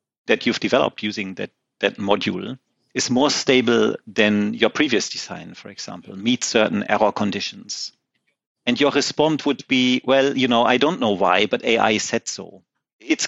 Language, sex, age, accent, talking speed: English, male, 40-59, German, 165 wpm